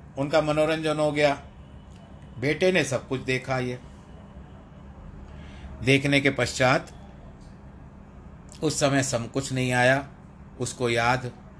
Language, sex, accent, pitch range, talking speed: Hindi, male, native, 100-130 Hz, 110 wpm